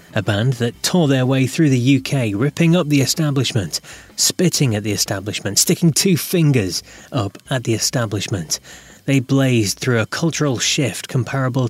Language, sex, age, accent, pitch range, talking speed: English, male, 30-49, British, 120-165 Hz, 160 wpm